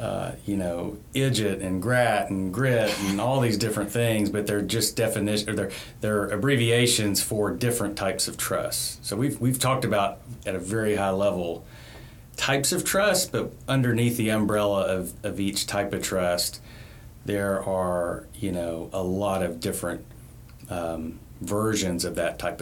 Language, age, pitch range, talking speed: English, 30-49, 95-115 Hz, 160 wpm